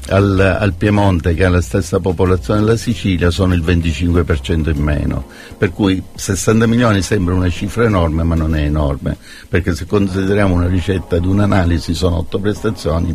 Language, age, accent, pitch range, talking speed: Italian, 50-69, native, 85-105 Hz, 170 wpm